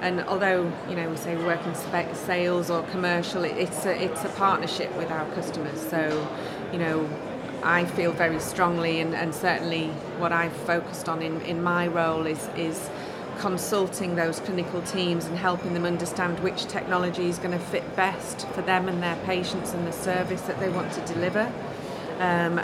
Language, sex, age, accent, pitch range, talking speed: English, female, 30-49, British, 170-185 Hz, 185 wpm